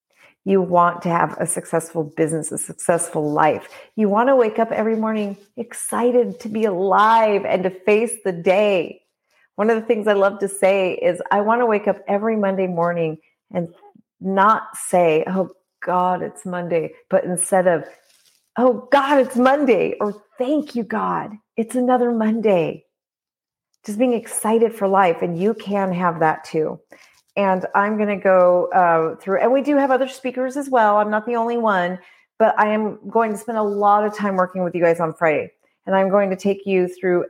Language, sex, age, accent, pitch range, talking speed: English, female, 40-59, American, 175-220 Hz, 190 wpm